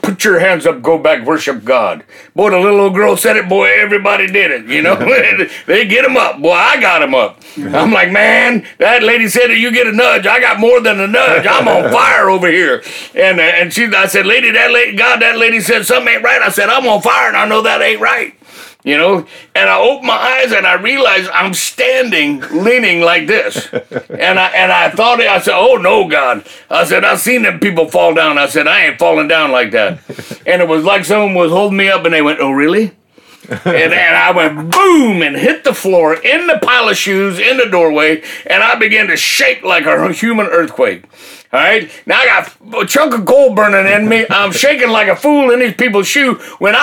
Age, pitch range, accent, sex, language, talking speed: 50-69, 195-275 Hz, American, male, English, 230 wpm